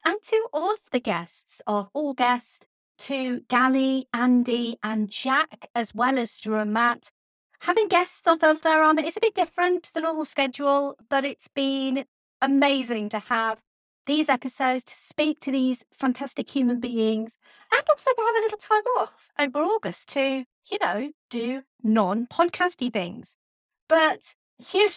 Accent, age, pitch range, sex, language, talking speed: British, 30-49, 235-325 Hz, female, English, 155 wpm